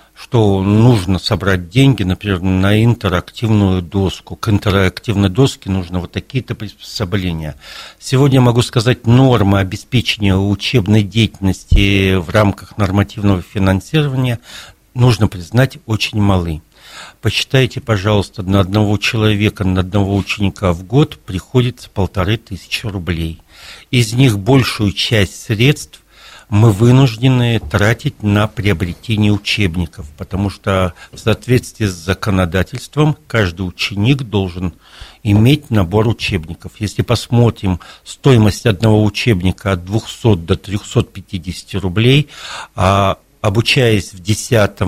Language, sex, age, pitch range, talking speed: Russian, male, 60-79, 95-115 Hz, 110 wpm